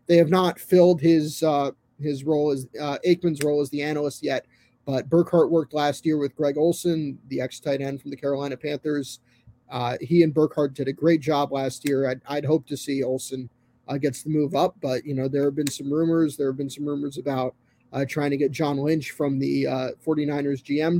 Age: 30-49